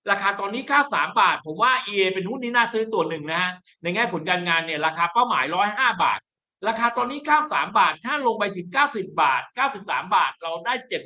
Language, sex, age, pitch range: Thai, male, 60-79, 190-255 Hz